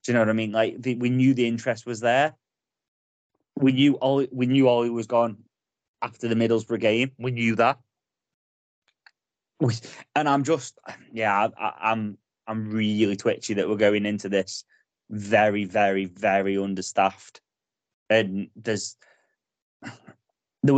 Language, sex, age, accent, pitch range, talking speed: English, male, 20-39, British, 110-130 Hz, 145 wpm